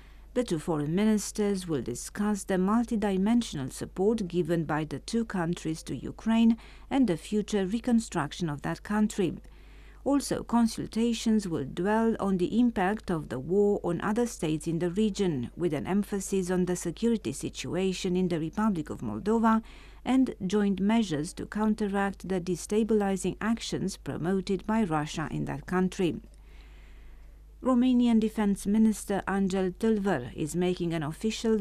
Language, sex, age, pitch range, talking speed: English, female, 50-69, 170-215 Hz, 140 wpm